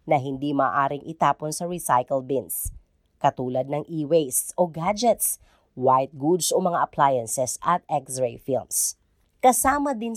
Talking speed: 130 wpm